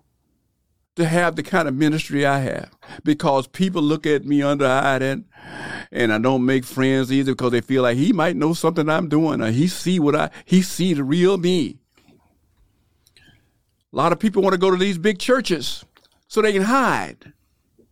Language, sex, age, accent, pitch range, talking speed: English, male, 50-69, American, 120-200 Hz, 195 wpm